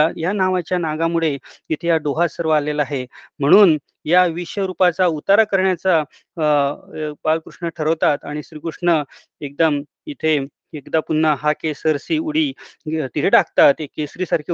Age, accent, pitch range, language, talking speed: 30-49, native, 160-190 Hz, Marathi, 85 wpm